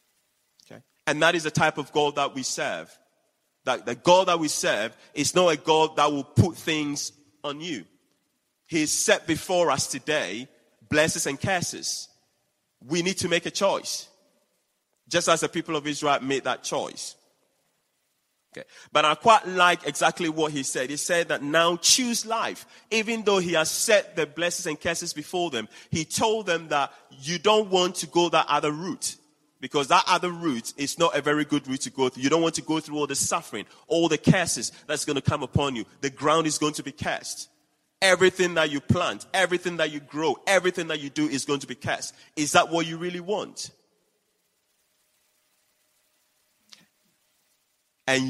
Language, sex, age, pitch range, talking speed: English, male, 30-49, 145-175 Hz, 185 wpm